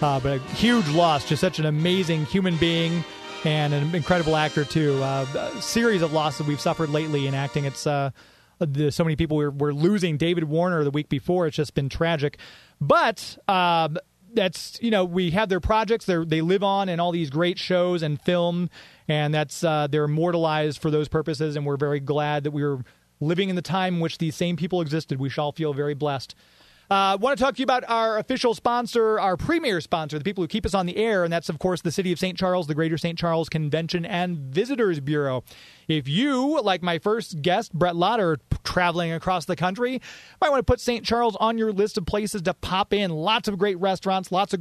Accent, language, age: American, English, 30-49